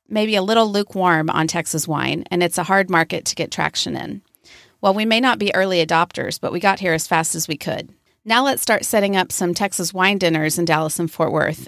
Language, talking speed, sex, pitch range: English, 235 wpm, female, 170-210 Hz